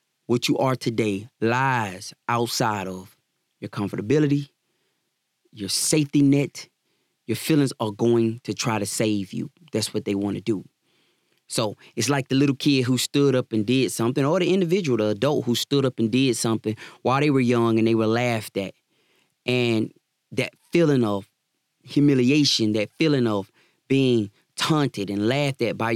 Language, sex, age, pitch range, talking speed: English, male, 20-39, 115-150 Hz, 170 wpm